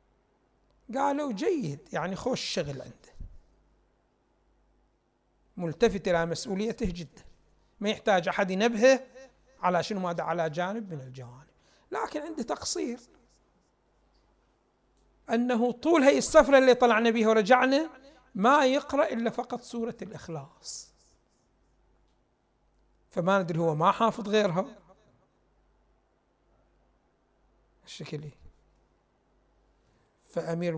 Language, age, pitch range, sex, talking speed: Arabic, 60-79, 175-245 Hz, male, 90 wpm